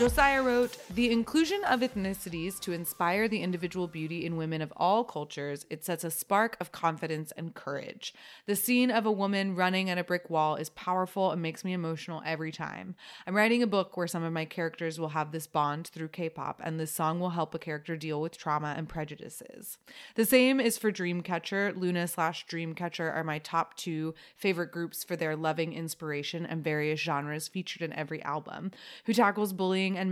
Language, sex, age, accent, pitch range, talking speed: English, female, 30-49, American, 160-195 Hz, 195 wpm